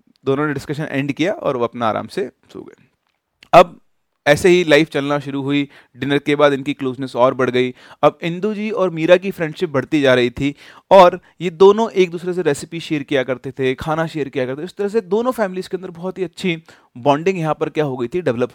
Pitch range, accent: 145-195 Hz, native